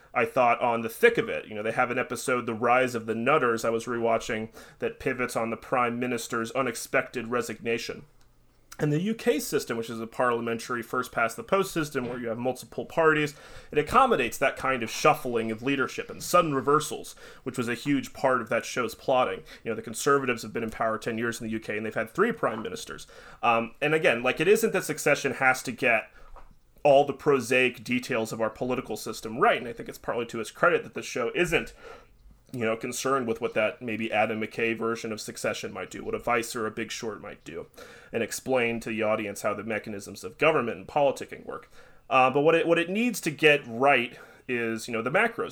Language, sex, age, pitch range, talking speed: English, male, 30-49, 115-140 Hz, 220 wpm